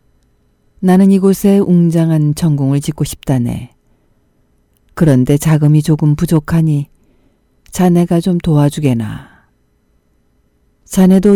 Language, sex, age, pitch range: Korean, female, 40-59, 125-170 Hz